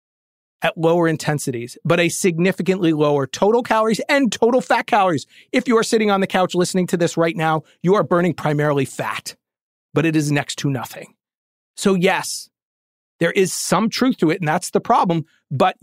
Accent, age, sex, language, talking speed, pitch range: American, 40-59, male, English, 185 wpm, 150-210 Hz